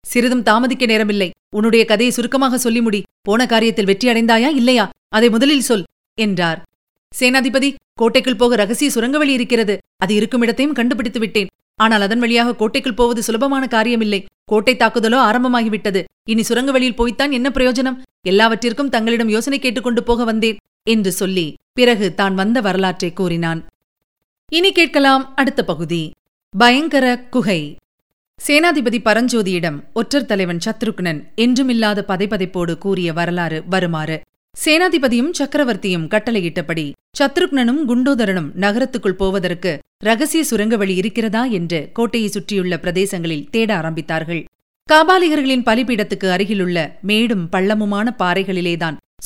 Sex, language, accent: female, Tamil, native